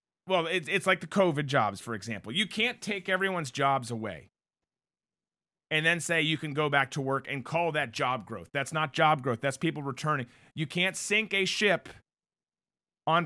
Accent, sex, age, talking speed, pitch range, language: American, male, 30-49, 190 wpm, 125-175 Hz, English